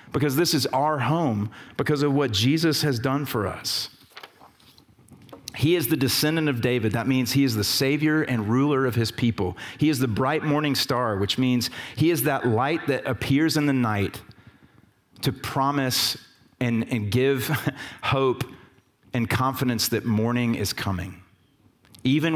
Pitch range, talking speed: 110-130 Hz, 160 wpm